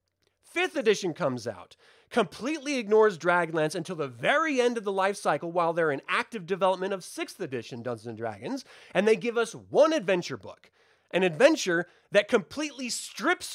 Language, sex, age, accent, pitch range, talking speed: English, male, 30-49, American, 160-245 Hz, 165 wpm